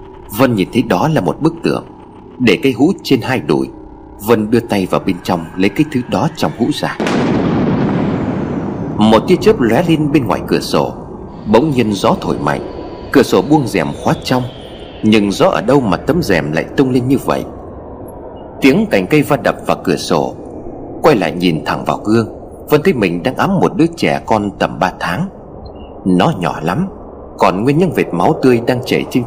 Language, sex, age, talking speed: Vietnamese, male, 30-49, 200 wpm